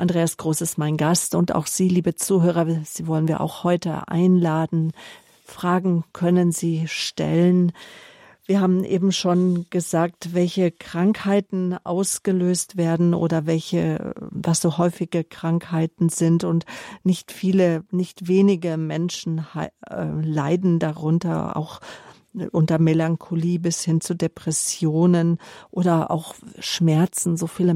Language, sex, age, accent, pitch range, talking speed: German, female, 50-69, German, 160-180 Hz, 120 wpm